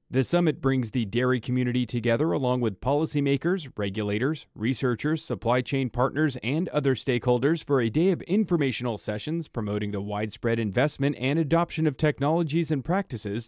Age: 40-59